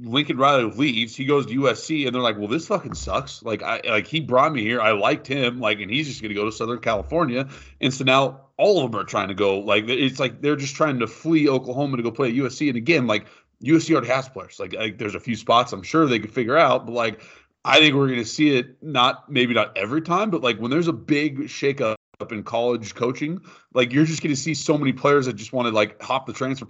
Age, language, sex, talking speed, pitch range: 30-49, English, male, 265 wpm, 105-135 Hz